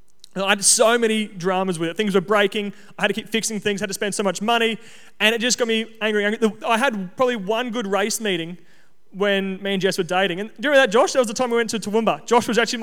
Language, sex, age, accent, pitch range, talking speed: English, male, 20-39, Australian, 185-225 Hz, 265 wpm